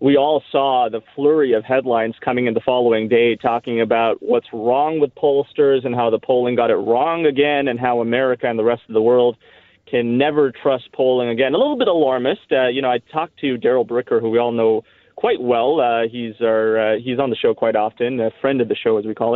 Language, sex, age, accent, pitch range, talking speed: English, male, 30-49, American, 120-150 Hz, 230 wpm